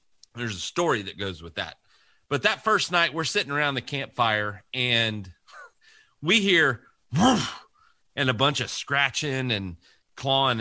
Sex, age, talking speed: male, 30-49, 145 wpm